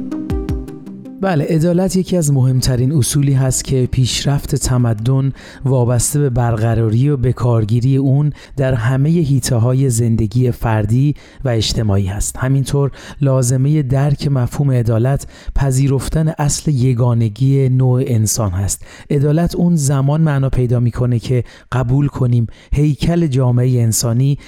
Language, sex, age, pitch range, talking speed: Persian, male, 30-49, 120-140 Hz, 120 wpm